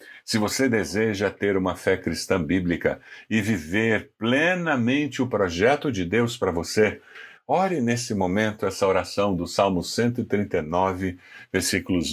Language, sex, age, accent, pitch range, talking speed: Portuguese, male, 60-79, Brazilian, 95-135 Hz, 130 wpm